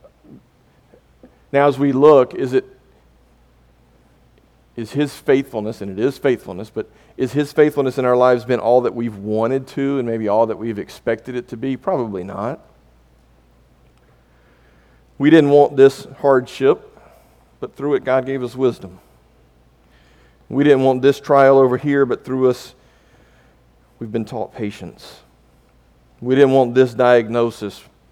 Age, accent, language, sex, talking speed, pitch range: 40-59, American, English, male, 145 wpm, 100-130 Hz